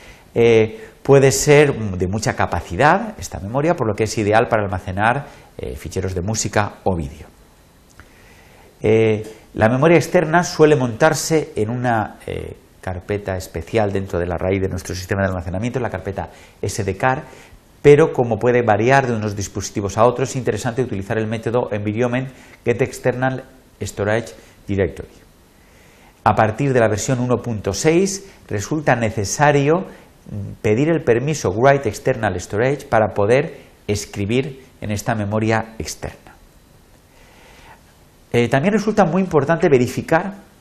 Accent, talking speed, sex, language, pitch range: Spanish, 135 wpm, male, Spanish, 100-135 Hz